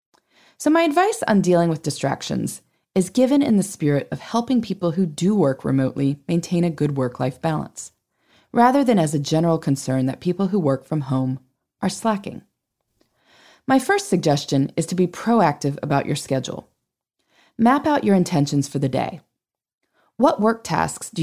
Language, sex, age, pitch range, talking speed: English, female, 20-39, 150-225 Hz, 165 wpm